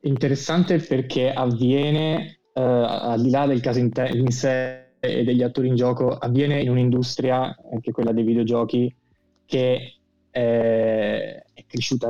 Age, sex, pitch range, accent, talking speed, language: 20-39, male, 115-135 Hz, native, 135 wpm, Italian